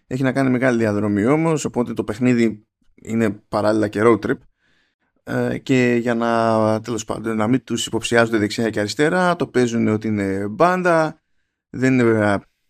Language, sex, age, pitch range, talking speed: Greek, male, 20-39, 105-125 Hz, 160 wpm